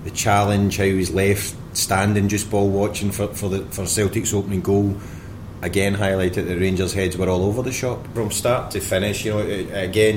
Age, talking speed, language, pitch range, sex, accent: 30-49, 210 wpm, English, 90-105 Hz, male, British